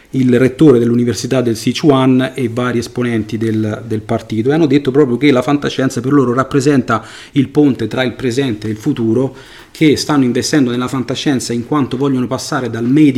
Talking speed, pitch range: 180 wpm, 110-130 Hz